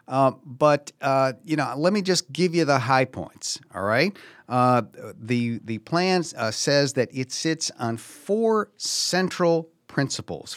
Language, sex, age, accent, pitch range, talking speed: English, male, 50-69, American, 120-160 Hz, 160 wpm